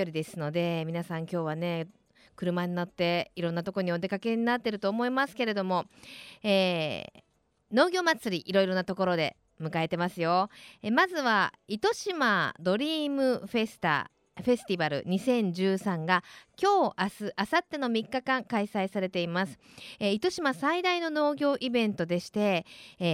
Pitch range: 180-270 Hz